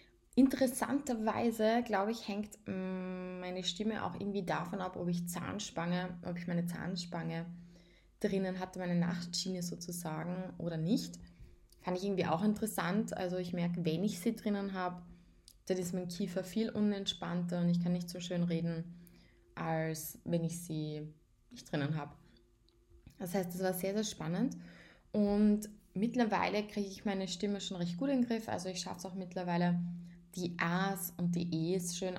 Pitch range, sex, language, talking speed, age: 175-195 Hz, female, German, 160 wpm, 20-39